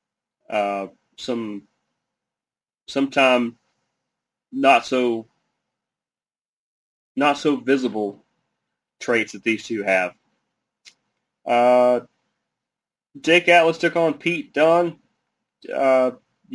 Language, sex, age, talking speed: English, male, 30-49, 75 wpm